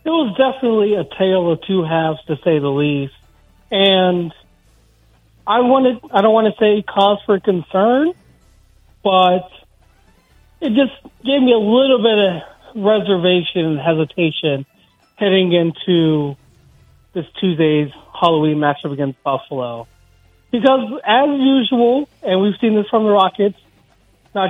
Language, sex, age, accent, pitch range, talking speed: English, male, 40-59, American, 155-205 Hz, 130 wpm